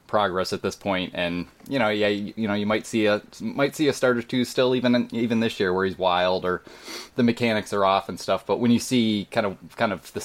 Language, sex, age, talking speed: English, male, 20-39, 265 wpm